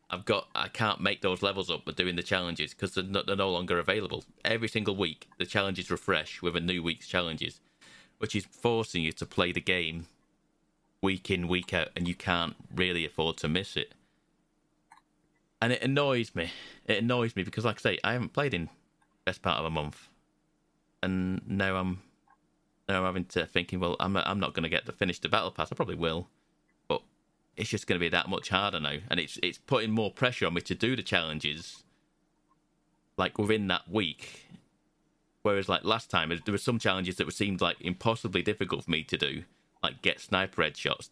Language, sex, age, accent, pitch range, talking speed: English, male, 30-49, British, 90-110 Hz, 205 wpm